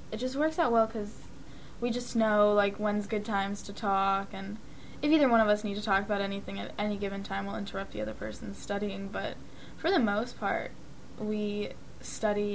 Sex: female